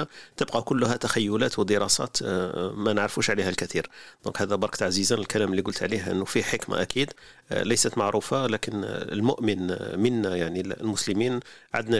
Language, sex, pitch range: Arabic, male, 95-110 Hz